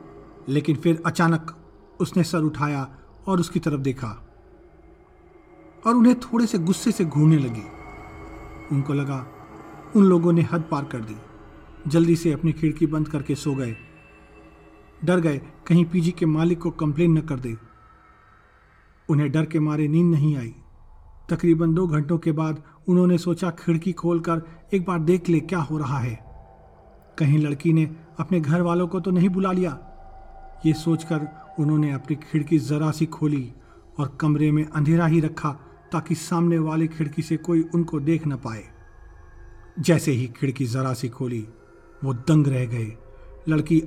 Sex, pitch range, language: male, 135-165 Hz, Hindi